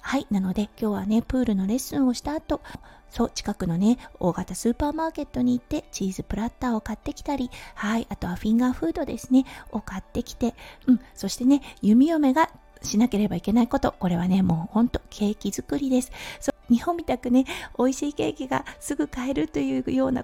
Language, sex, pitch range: Japanese, female, 210-275 Hz